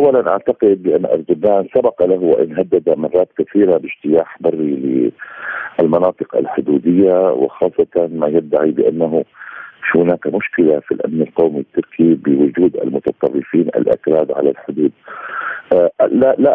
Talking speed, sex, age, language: 115 wpm, male, 50-69, Arabic